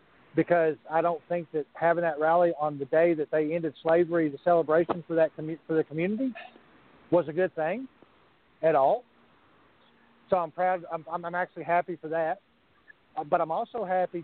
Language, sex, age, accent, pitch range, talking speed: English, male, 40-59, American, 165-205 Hz, 180 wpm